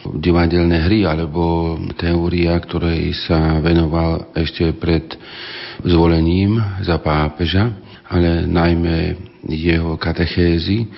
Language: Slovak